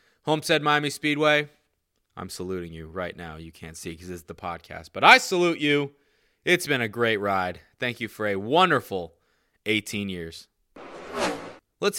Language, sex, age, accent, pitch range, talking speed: English, male, 20-39, American, 115-165 Hz, 165 wpm